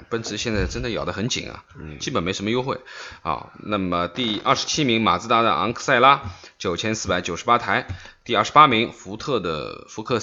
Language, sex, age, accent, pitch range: Chinese, male, 20-39, native, 85-110 Hz